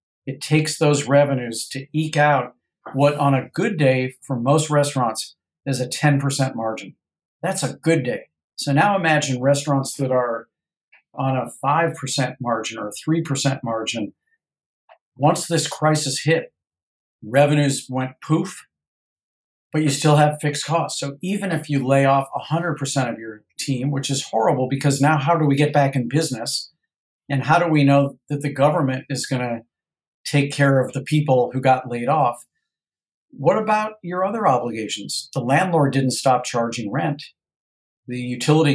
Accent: American